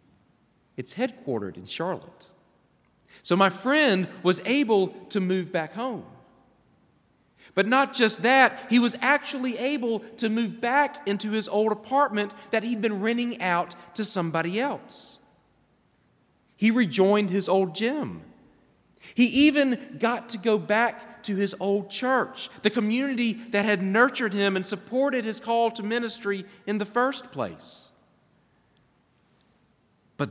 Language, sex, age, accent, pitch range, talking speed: English, male, 40-59, American, 155-235 Hz, 135 wpm